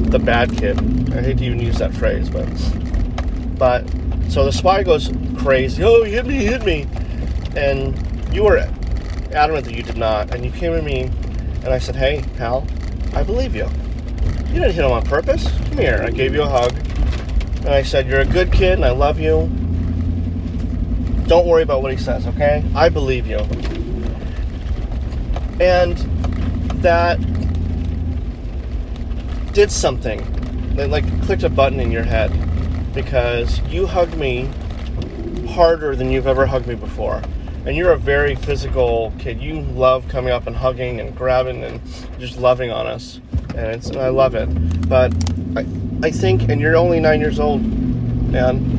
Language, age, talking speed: English, 30-49, 170 wpm